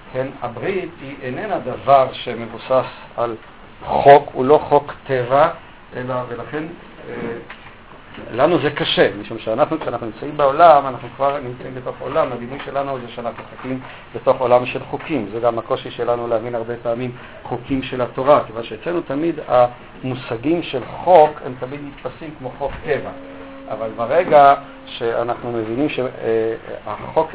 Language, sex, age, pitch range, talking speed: Hebrew, male, 50-69, 115-140 Hz, 140 wpm